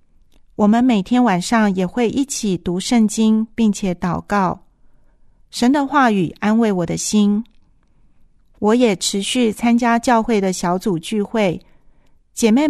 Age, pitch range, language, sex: 40-59, 195-240 Hz, Chinese, female